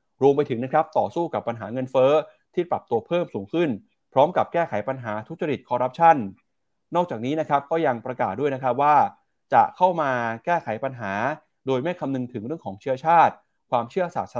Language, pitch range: Thai, 120-160 Hz